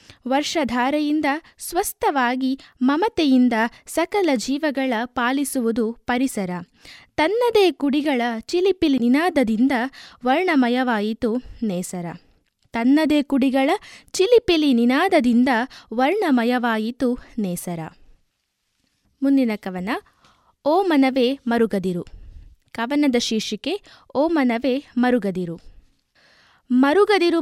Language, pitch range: Kannada, 235-295 Hz